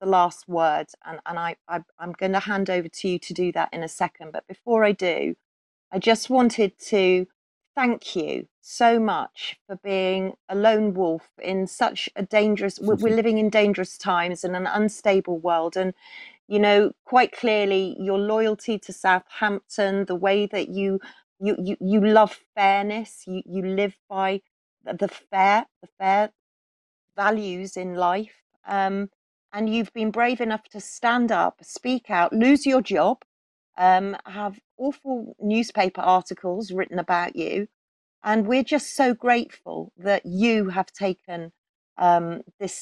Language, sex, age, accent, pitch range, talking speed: English, female, 40-59, British, 185-220 Hz, 160 wpm